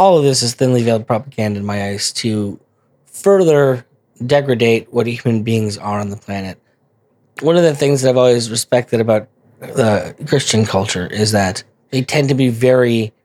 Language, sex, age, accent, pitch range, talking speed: English, male, 20-39, American, 105-125 Hz, 175 wpm